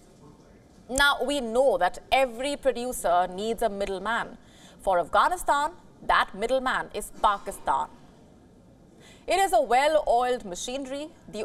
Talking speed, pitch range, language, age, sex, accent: 110 wpm, 220-290 Hz, English, 30-49, female, Indian